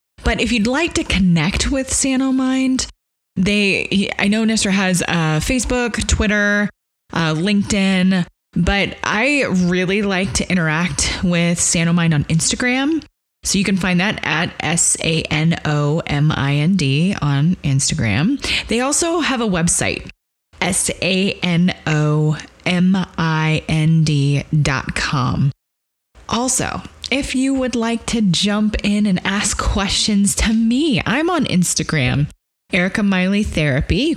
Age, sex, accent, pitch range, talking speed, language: 20-39, female, American, 160-210 Hz, 110 wpm, English